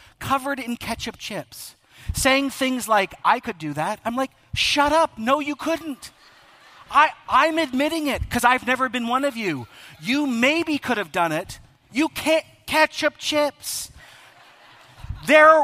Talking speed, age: 155 wpm, 40-59